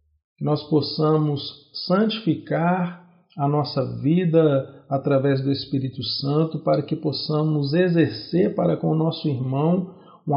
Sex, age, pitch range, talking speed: male, 50-69, 135-160 Hz, 120 wpm